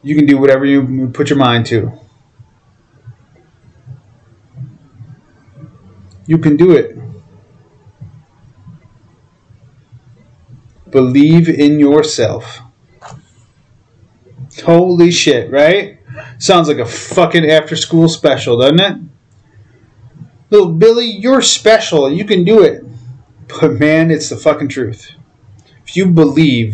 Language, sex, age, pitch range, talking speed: English, male, 30-49, 120-155 Hz, 100 wpm